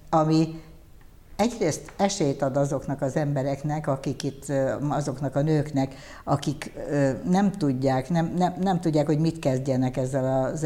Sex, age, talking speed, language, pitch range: female, 60-79, 135 wpm, Hungarian, 135-160 Hz